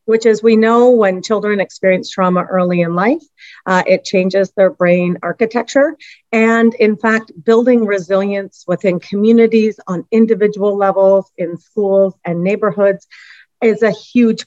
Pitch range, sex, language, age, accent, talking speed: 180-220 Hz, female, English, 40-59, American, 140 wpm